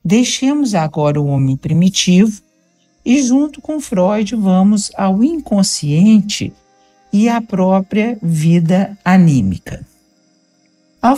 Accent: Brazilian